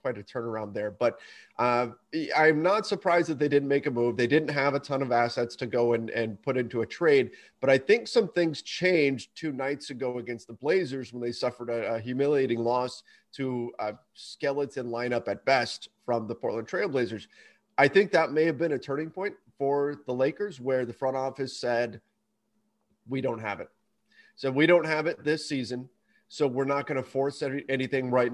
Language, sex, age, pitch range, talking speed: English, male, 30-49, 120-145 Hz, 205 wpm